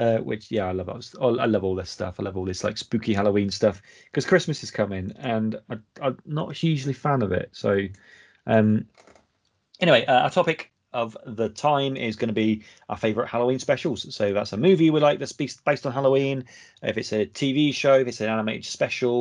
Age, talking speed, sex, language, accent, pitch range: 30-49, 215 wpm, male, English, British, 110-170 Hz